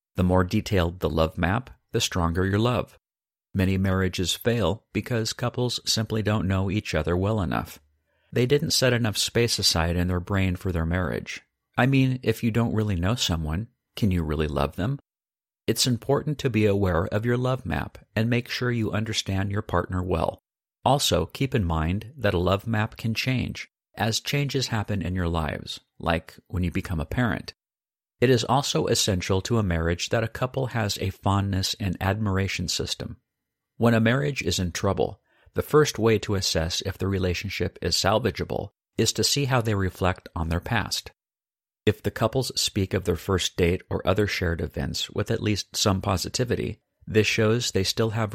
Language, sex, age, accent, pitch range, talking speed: English, male, 50-69, American, 90-115 Hz, 185 wpm